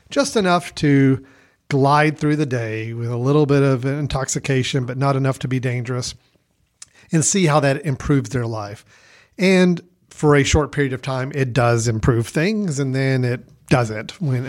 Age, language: 40-59, English